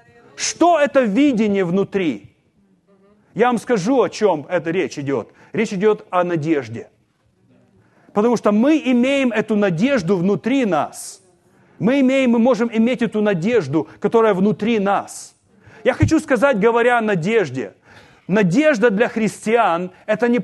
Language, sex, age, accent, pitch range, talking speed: Russian, male, 30-49, native, 200-245 Hz, 130 wpm